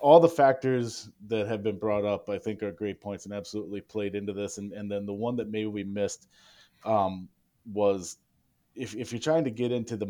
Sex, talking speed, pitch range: male, 220 wpm, 100-115 Hz